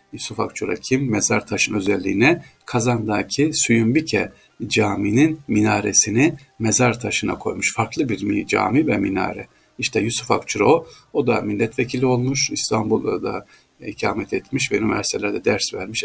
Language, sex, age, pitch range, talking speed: Turkish, male, 50-69, 105-130 Hz, 125 wpm